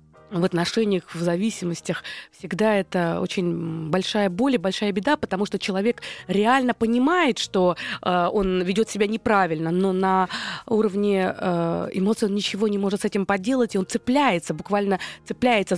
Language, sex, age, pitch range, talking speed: Russian, female, 20-39, 180-225 Hz, 150 wpm